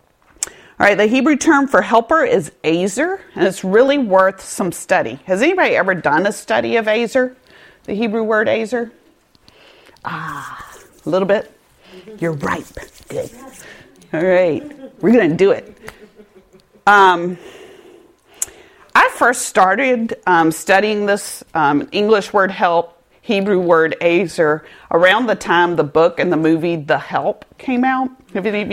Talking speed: 145 wpm